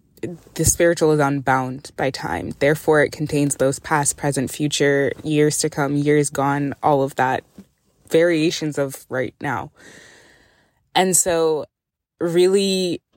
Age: 20-39